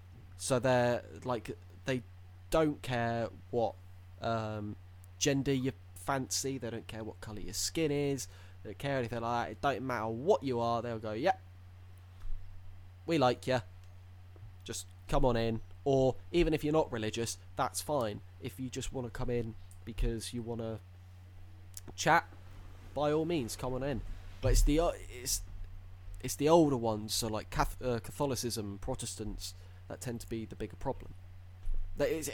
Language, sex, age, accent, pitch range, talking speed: English, male, 20-39, British, 90-125 Hz, 170 wpm